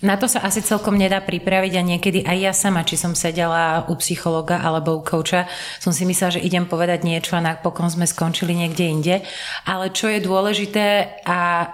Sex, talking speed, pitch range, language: female, 195 wpm, 175-200 Hz, Slovak